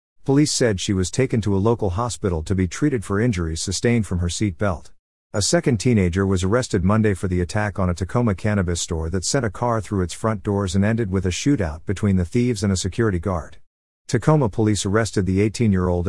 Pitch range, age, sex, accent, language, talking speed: 90-115 Hz, 50-69, male, American, English, 215 wpm